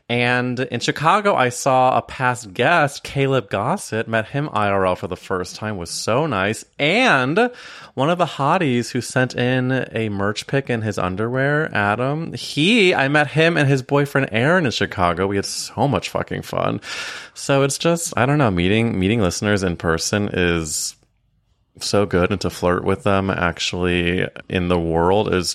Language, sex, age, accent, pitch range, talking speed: English, male, 20-39, American, 95-130 Hz, 175 wpm